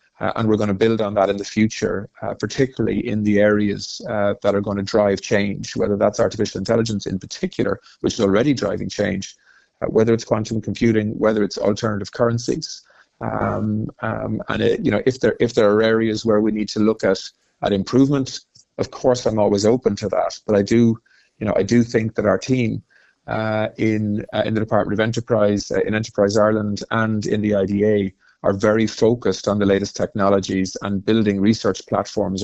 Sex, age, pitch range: male, 30-49, 100-110 Hz